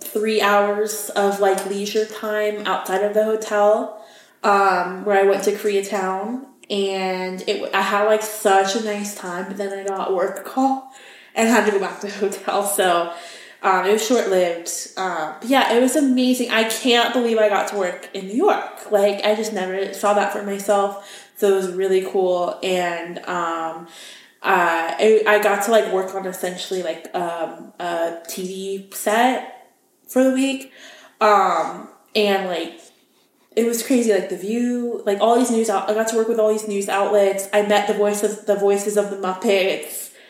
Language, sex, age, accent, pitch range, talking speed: English, female, 20-39, American, 190-220 Hz, 185 wpm